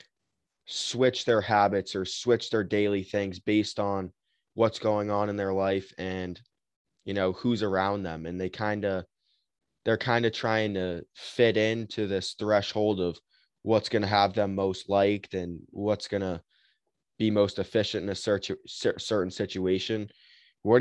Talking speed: 160 wpm